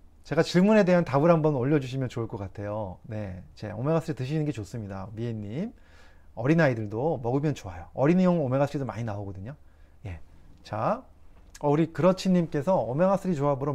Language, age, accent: Korean, 30-49, native